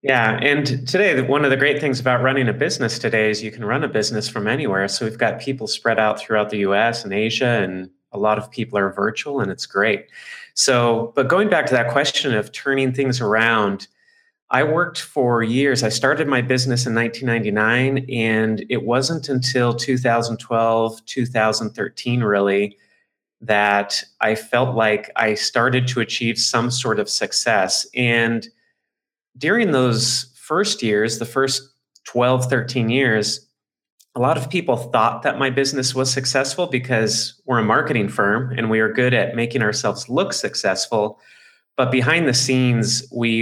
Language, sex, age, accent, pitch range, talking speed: English, male, 30-49, American, 110-130 Hz, 165 wpm